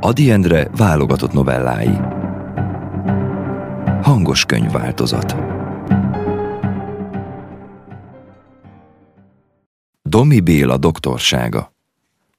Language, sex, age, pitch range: Hungarian, male, 30-49, 70-105 Hz